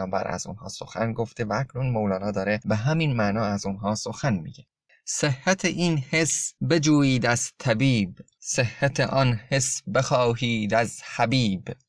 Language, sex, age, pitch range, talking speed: Persian, male, 20-39, 110-140 Hz, 135 wpm